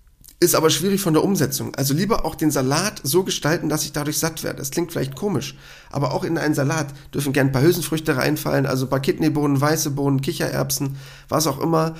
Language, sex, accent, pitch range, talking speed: German, male, German, 130-160 Hz, 215 wpm